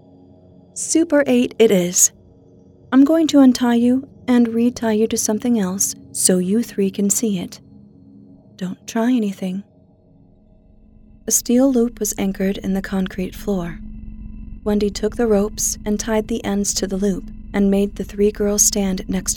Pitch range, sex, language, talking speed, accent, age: 175-220 Hz, female, English, 160 wpm, American, 30-49